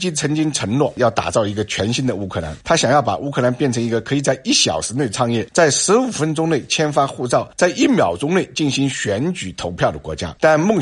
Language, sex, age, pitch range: Chinese, male, 50-69, 95-140 Hz